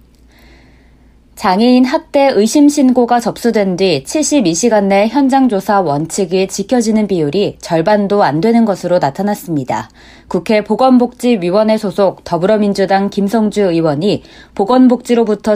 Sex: female